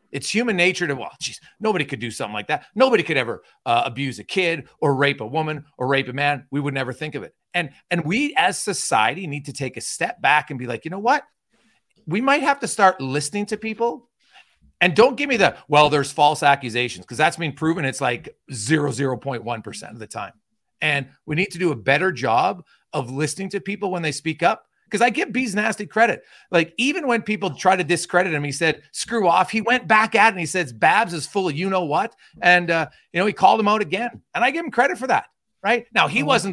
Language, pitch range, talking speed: English, 145-200 Hz, 235 wpm